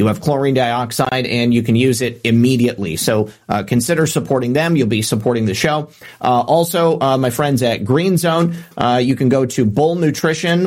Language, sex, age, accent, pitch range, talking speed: English, male, 40-59, American, 120-150 Hz, 195 wpm